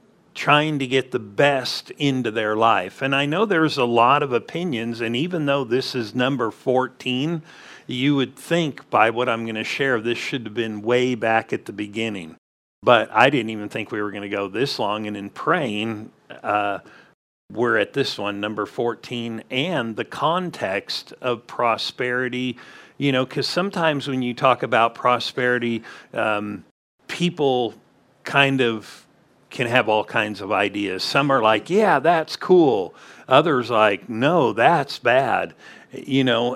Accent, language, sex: American, English, male